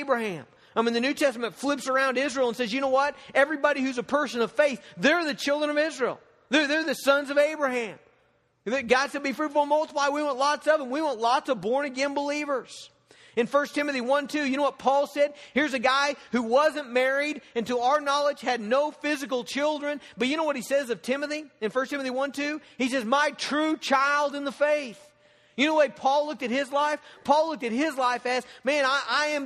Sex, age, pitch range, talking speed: male, 40-59, 250-290 Hz, 230 wpm